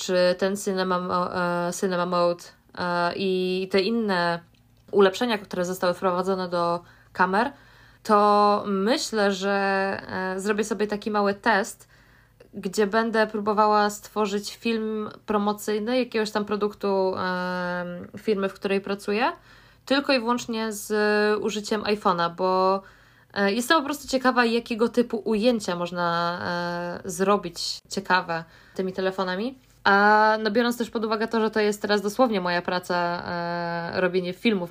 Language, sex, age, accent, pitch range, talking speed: Polish, female, 20-39, native, 180-215 Hz, 120 wpm